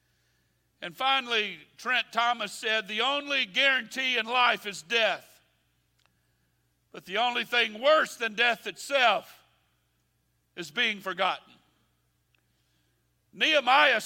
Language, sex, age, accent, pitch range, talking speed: English, male, 60-79, American, 195-275 Hz, 100 wpm